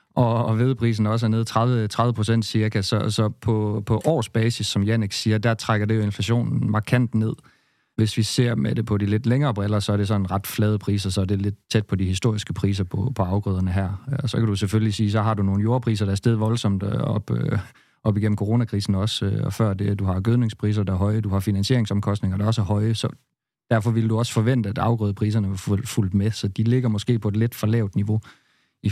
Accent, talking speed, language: native, 235 wpm, Danish